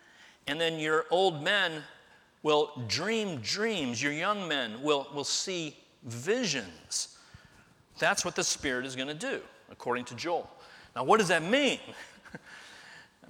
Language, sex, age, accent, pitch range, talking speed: English, male, 40-59, American, 130-165 Hz, 145 wpm